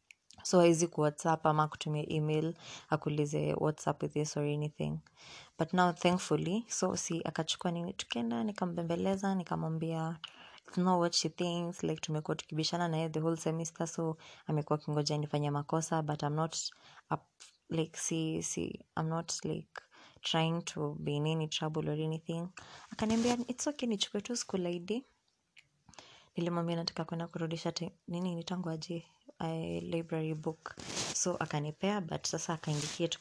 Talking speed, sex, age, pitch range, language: 165 wpm, female, 20-39, 150-175 Hz, English